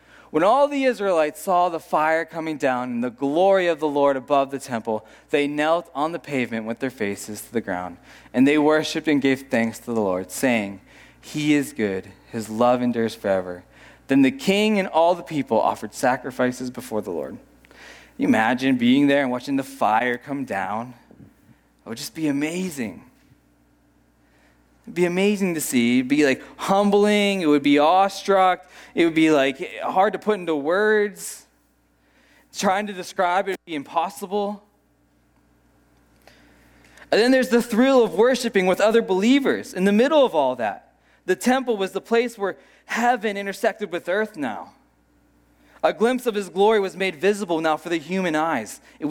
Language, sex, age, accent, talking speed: English, male, 20-39, American, 175 wpm